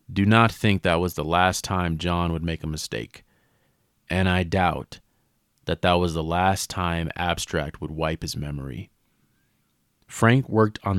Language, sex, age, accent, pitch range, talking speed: English, male, 30-49, American, 85-100 Hz, 165 wpm